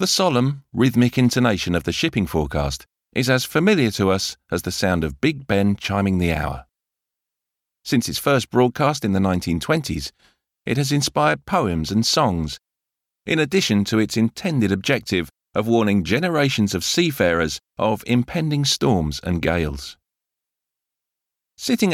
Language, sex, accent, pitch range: English, male, British, 85-125 Hz